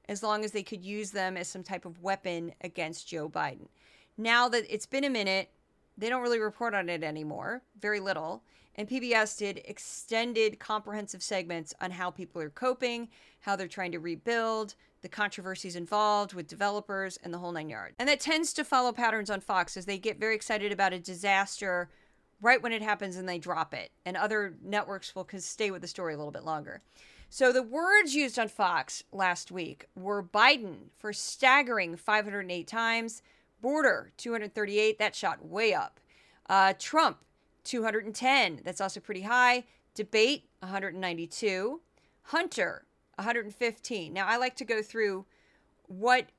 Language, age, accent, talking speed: English, 30-49, American, 170 wpm